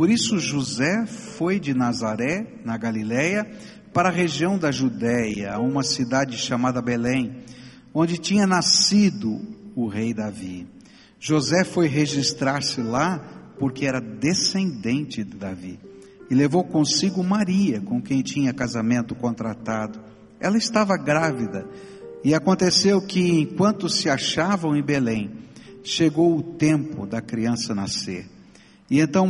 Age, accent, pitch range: 60-79, Brazilian, 115-170 Hz